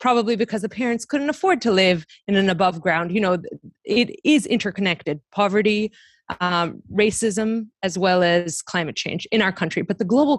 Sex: female